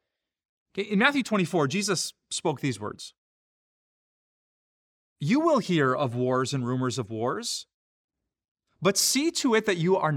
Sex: male